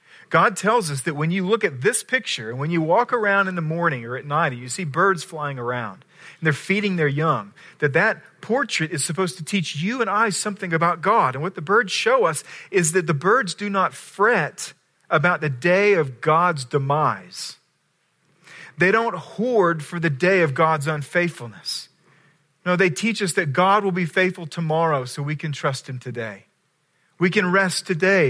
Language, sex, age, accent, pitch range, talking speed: English, male, 40-59, American, 145-190 Hz, 195 wpm